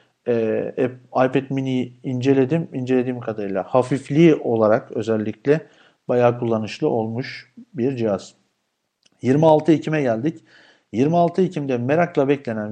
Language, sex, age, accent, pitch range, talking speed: Turkish, male, 50-69, native, 115-145 Hz, 95 wpm